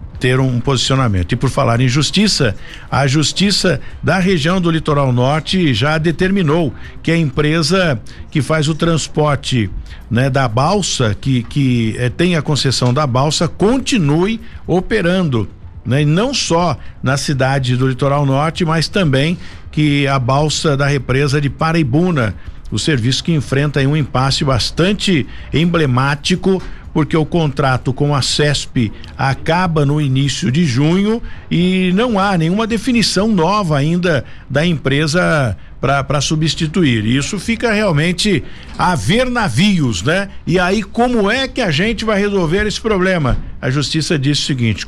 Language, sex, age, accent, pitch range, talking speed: Portuguese, male, 60-79, Brazilian, 130-175 Hz, 145 wpm